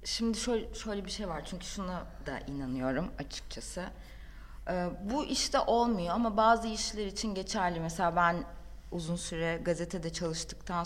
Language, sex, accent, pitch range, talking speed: Turkish, female, native, 165-210 Hz, 145 wpm